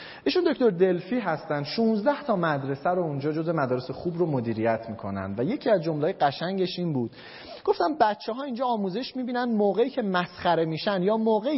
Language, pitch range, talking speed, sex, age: Persian, 140-220 Hz, 175 wpm, male, 30-49